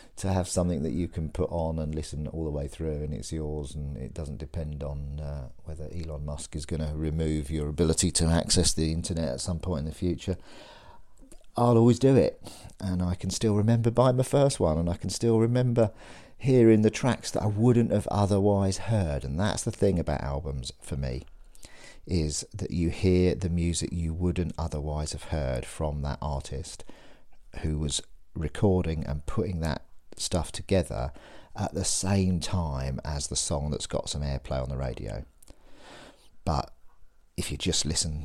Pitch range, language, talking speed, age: 75-90 Hz, English, 185 wpm, 50-69